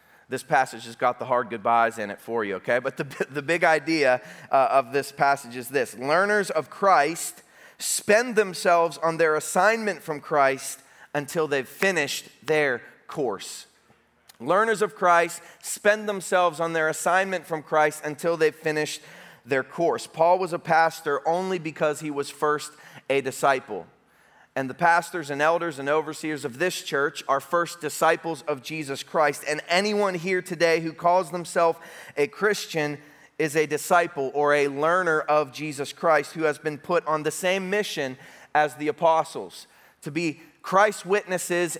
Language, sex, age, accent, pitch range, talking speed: English, male, 30-49, American, 150-185 Hz, 160 wpm